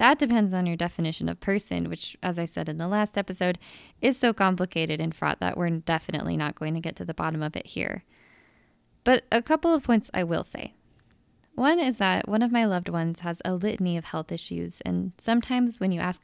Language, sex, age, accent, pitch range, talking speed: English, female, 20-39, American, 165-225 Hz, 220 wpm